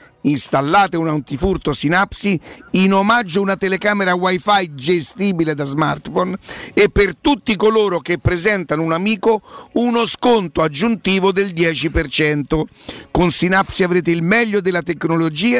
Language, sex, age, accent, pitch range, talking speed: Italian, male, 50-69, native, 155-205 Hz, 125 wpm